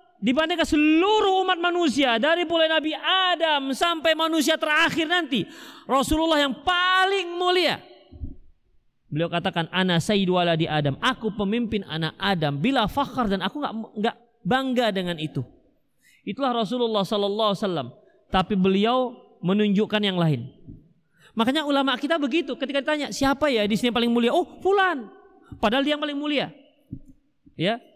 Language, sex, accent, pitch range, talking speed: Indonesian, male, native, 215-325 Hz, 140 wpm